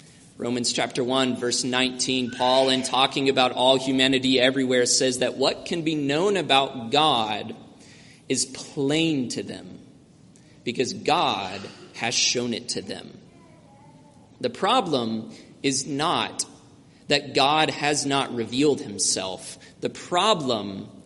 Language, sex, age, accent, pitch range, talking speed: English, male, 30-49, American, 120-145 Hz, 125 wpm